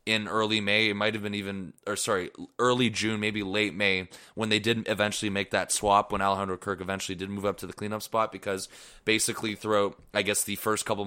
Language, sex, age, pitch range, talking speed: English, male, 20-39, 100-115 Hz, 220 wpm